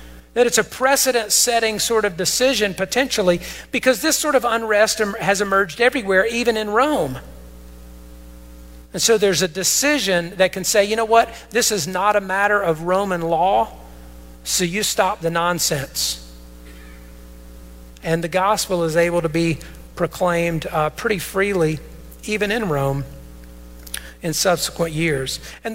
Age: 50-69